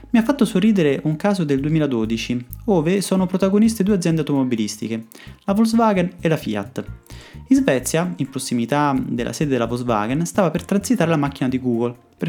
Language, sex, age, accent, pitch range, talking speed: Italian, male, 30-49, native, 120-200 Hz, 170 wpm